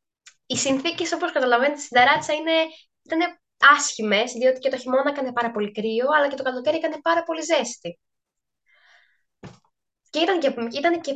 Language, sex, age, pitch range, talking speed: Greek, female, 10-29, 235-305 Hz, 150 wpm